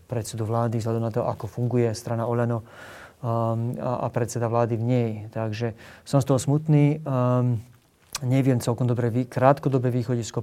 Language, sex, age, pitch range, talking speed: Slovak, male, 30-49, 115-125 Hz, 150 wpm